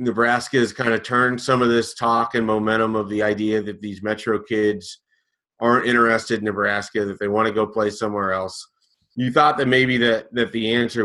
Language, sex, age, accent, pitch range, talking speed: English, male, 30-49, American, 105-130 Hz, 205 wpm